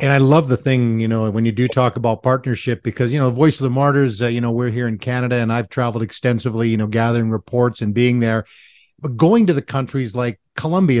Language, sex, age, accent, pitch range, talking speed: English, male, 50-69, American, 120-140 Hz, 245 wpm